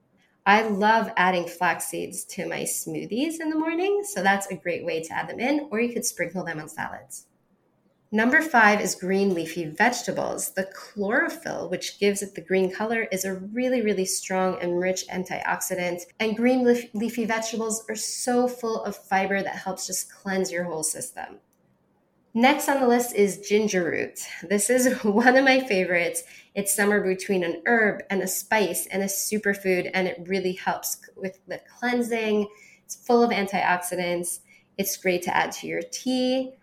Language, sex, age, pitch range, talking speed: English, female, 20-39, 185-230 Hz, 175 wpm